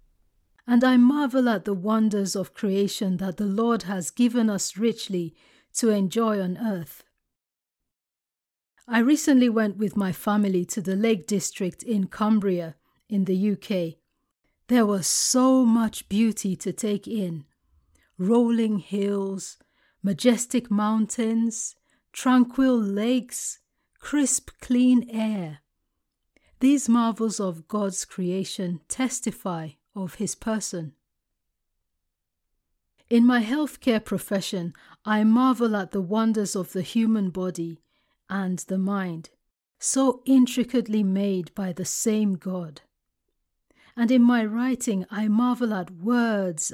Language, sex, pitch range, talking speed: English, female, 185-235 Hz, 115 wpm